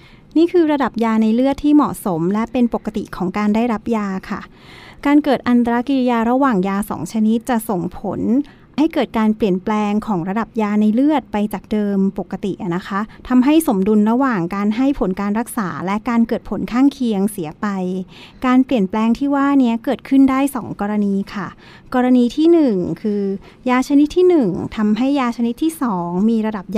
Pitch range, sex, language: 205-260 Hz, female, Thai